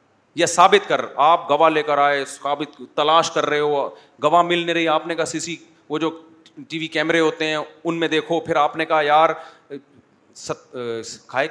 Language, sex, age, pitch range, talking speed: Urdu, male, 30-49, 145-170 Hz, 200 wpm